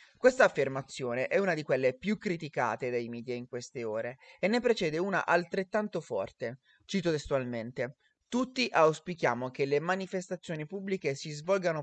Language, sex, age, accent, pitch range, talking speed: Italian, male, 30-49, native, 140-195 Hz, 145 wpm